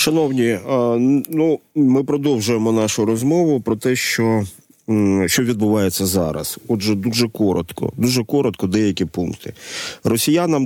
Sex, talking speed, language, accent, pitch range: male, 115 wpm, Ukrainian, native, 95-120 Hz